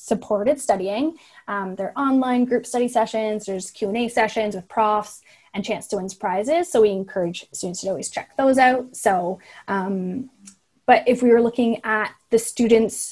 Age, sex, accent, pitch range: 20-39, female, American, 200-245 Hz